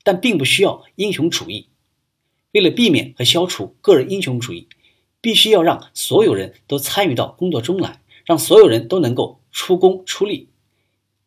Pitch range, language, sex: 130-205 Hz, Chinese, male